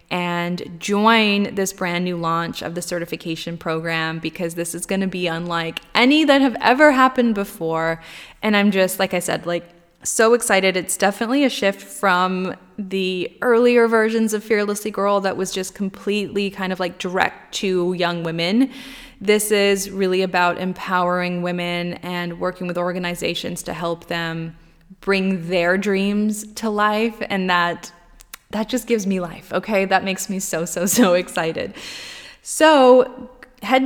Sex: female